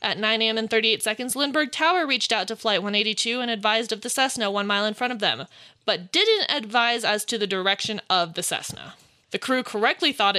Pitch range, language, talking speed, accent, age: 200-255 Hz, English, 220 wpm, American, 20-39